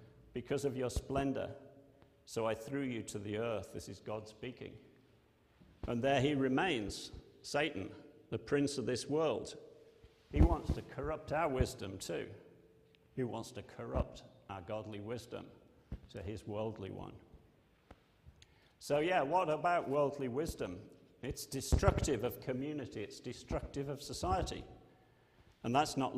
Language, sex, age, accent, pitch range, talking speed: English, male, 50-69, British, 110-140 Hz, 140 wpm